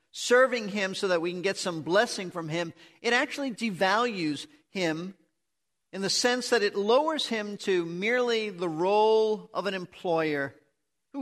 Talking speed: 160 wpm